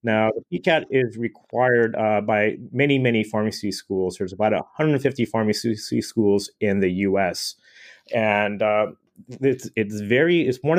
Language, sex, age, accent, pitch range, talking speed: English, male, 30-49, American, 105-130 Hz, 140 wpm